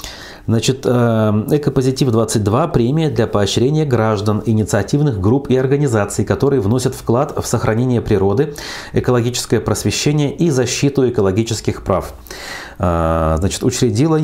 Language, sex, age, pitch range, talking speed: Russian, male, 30-49, 100-130 Hz, 105 wpm